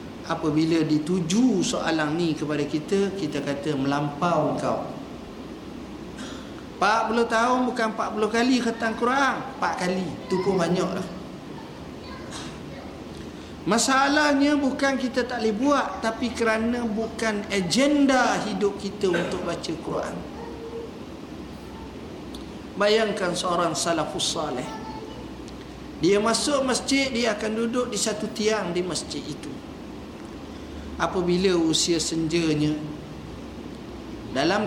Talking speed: 100 wpm